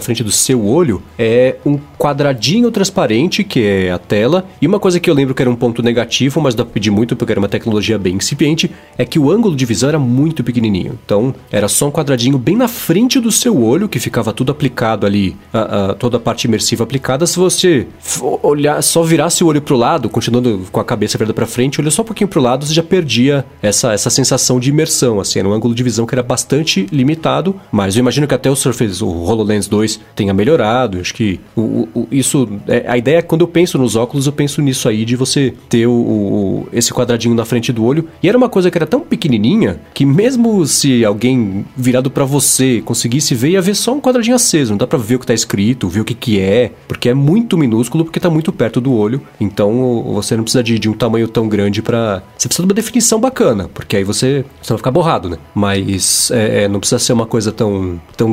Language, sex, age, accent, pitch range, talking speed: Portuguese, male, 30-49, Brazilian, 110-150 Hz, 230 wpm